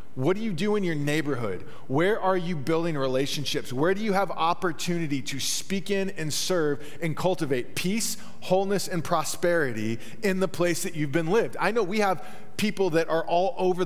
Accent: American